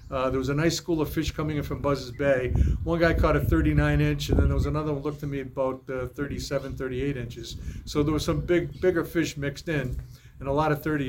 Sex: male